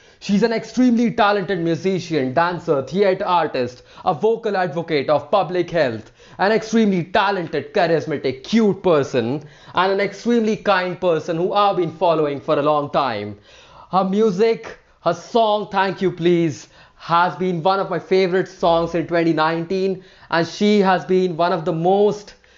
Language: English